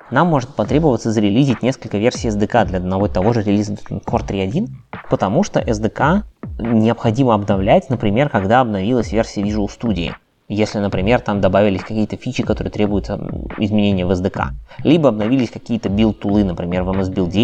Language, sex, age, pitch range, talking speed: Russian, male, 20-39, 100-120 Hz, 155 wpm